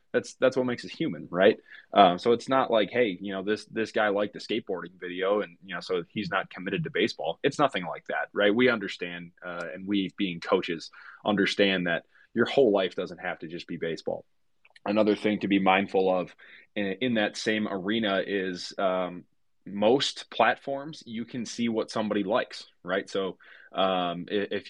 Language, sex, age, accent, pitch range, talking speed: English, male, 20-39, American, 95-115 Hz, 190 wpm